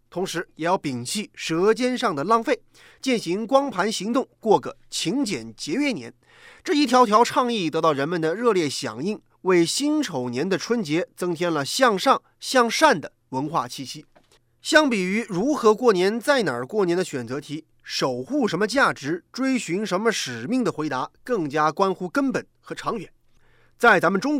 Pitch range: 165-250 Hz